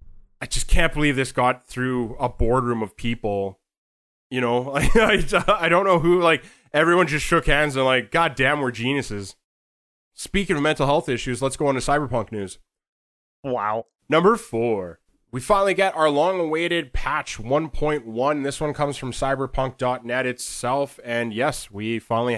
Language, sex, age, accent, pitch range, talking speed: English, male, 20-39, American, 110-140 Hz, 160 wpm